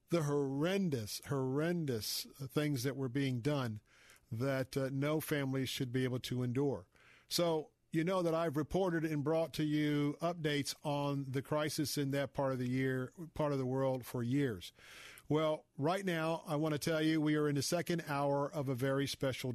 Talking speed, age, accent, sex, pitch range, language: 185 wpm, 50-69, American, male, 135-155 Hz, English